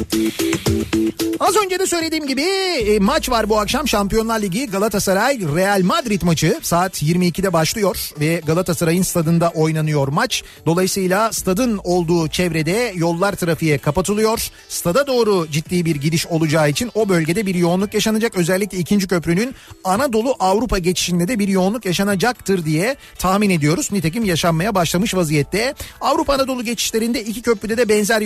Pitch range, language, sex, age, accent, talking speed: 175-230 Hz, Turkish, male, 40-59, native, 140 wpm